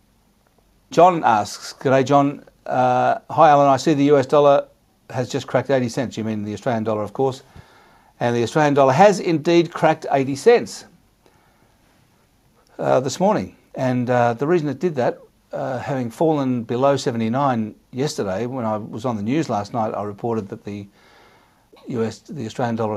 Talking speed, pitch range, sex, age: 170 wpm, 110-135 Hz, male, 60-79